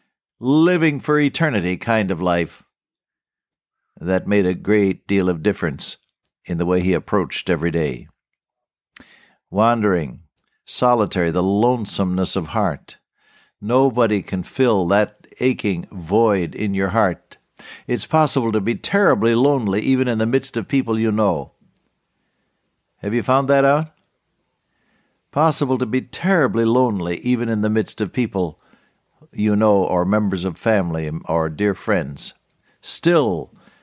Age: 60-79